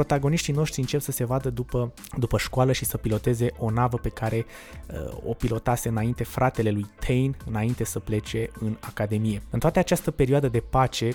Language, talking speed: Romanian, 185 wpm